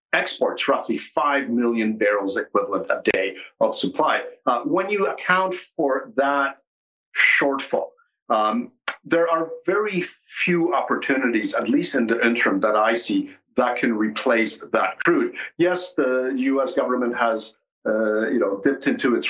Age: 50-69